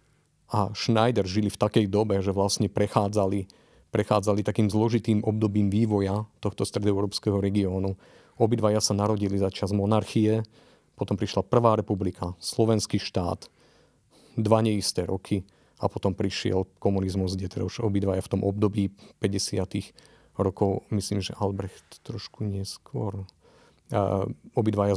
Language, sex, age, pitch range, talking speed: Slovak, male, 40-59, 100-115 Hz, 125 wpm